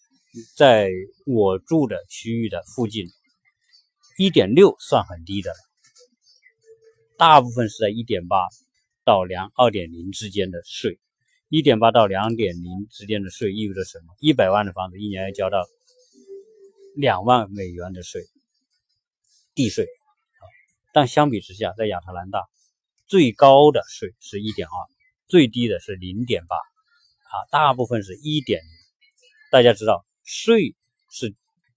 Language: Chinese